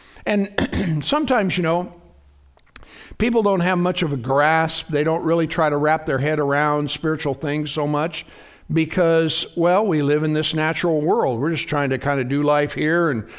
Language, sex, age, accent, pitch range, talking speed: English, male, 60-79, American, 150-185 Hz, 190 wpm